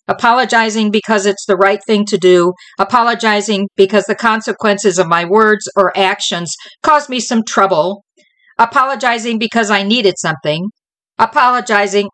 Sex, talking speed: female, 135 wpm